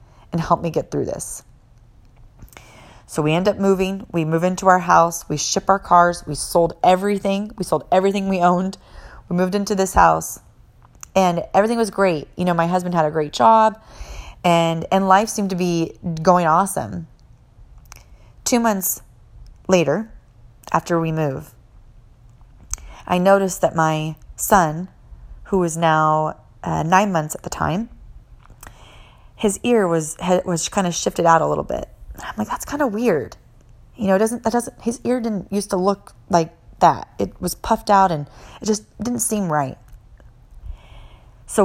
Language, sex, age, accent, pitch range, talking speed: English, female, 30-49, American, 150-190 Hz, 165 wpm